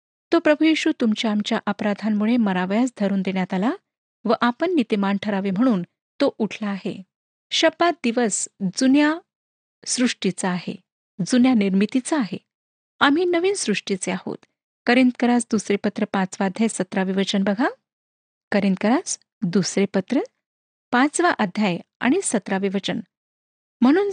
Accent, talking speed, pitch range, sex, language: native, 105 wpm, 195-260 Hz, female, Marathi